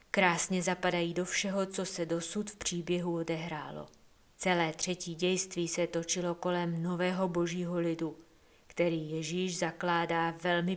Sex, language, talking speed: female, Czech, 130 wpm